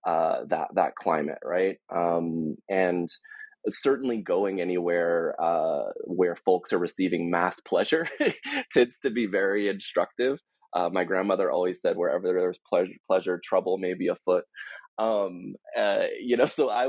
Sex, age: male, 20-39